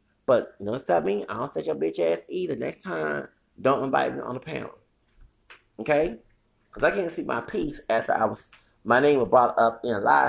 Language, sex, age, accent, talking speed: English, male, 30-49, American, 225 wpm